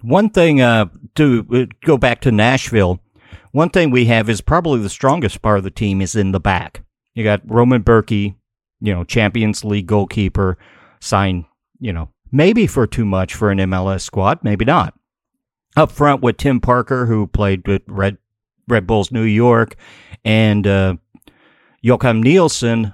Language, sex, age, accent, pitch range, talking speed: English, male, 50-69, American, 100-120 Hz, 165 wpm